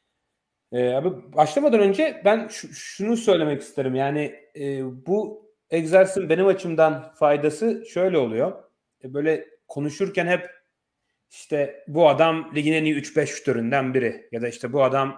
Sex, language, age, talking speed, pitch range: male, Turkish, 40-59, 135 wpm, 130-165 Hz